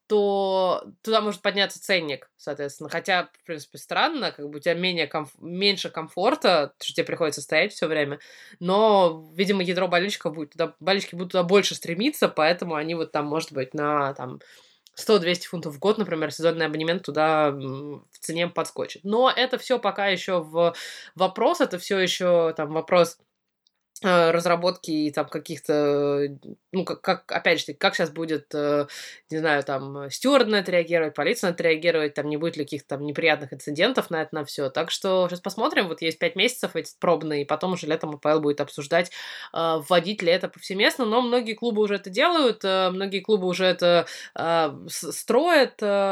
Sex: female